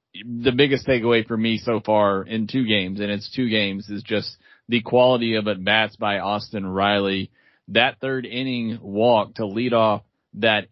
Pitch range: 110-130 Hz